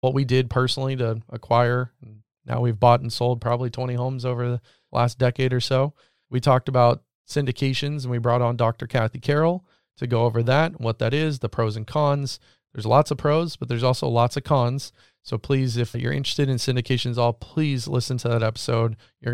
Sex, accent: male, American